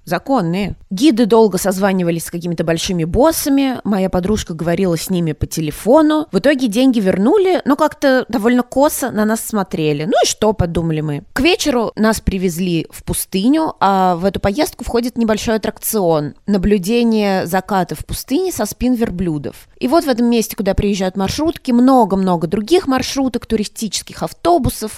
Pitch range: 175-245 Hz